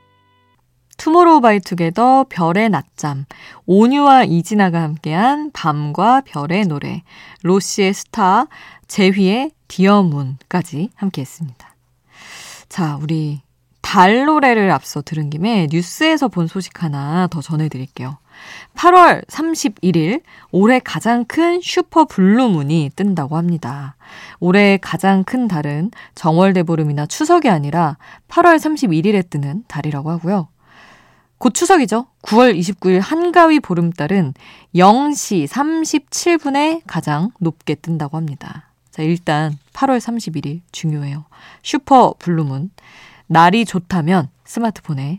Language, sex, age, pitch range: Korean, female, 20-39, 155-240 Hz